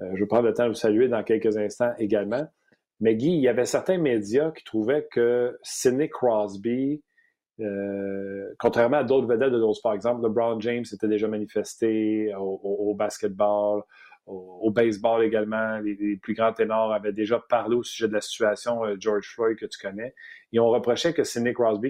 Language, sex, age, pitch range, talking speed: French, male, 40-59, 105-135 Hz, 195 wpm